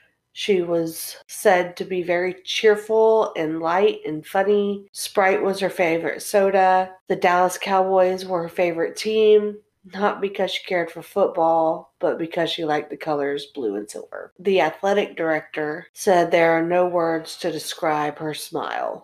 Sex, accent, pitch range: female, American, 165-195 Hz